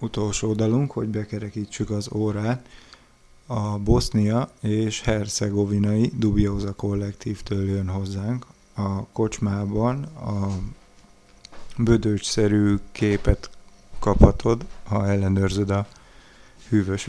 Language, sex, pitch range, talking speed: English, male, 100-115 Hz, 85 wpm